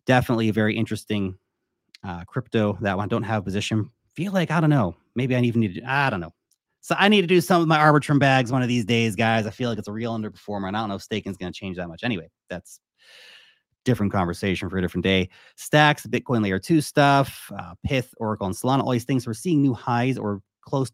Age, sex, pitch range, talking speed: 30-49, male, 110-135 Hz, 245 wpm